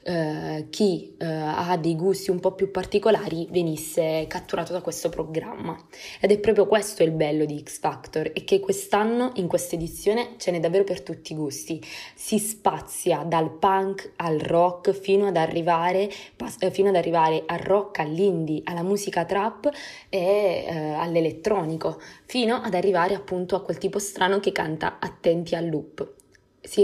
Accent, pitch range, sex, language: native, 165-195 Hz, female, Italian